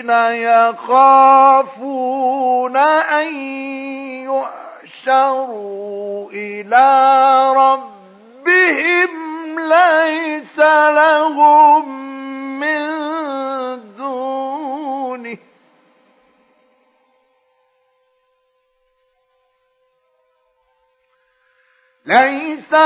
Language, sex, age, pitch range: Arabic, male, 50-69, 210-295 Hz